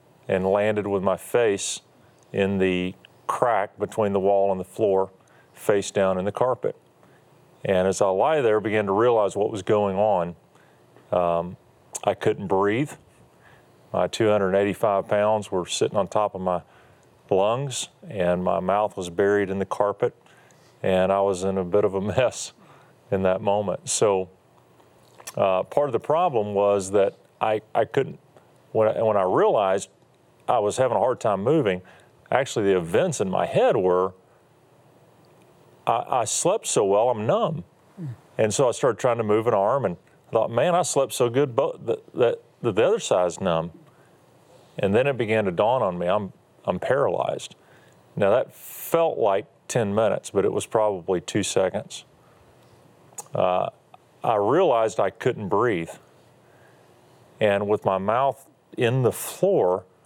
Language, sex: English, male